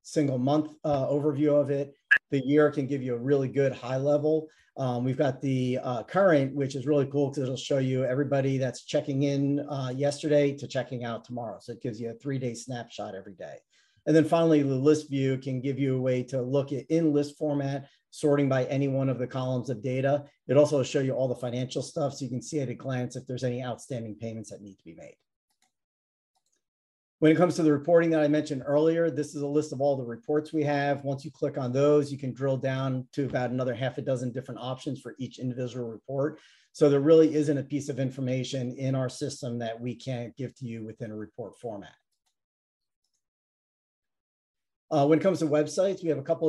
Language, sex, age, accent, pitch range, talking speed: English, male, 40-59, American, 130-145 Hz, 225 wpm